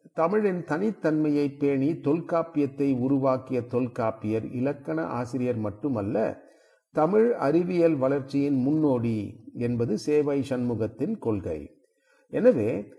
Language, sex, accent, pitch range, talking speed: Tamil, male, native, 120-160 Hz, 85 wpm